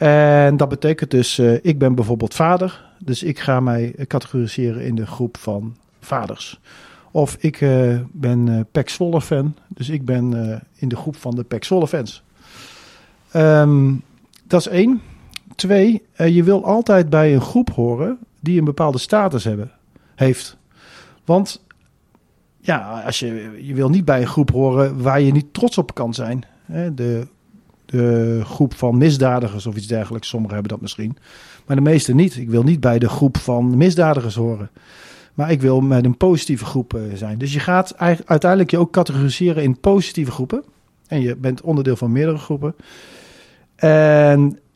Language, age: Dutch, 40-59